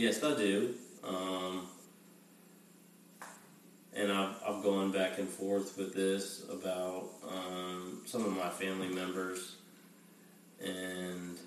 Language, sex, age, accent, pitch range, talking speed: English, male, 30-49, American, 90-100 Hz, 110 wpm